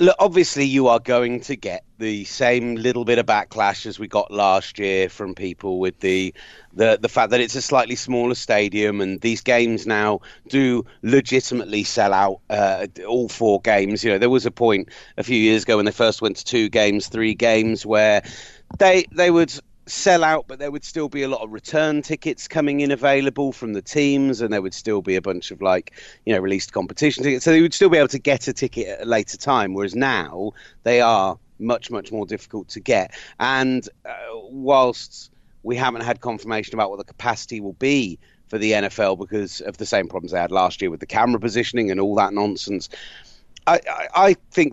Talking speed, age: 210 wpm, 30-49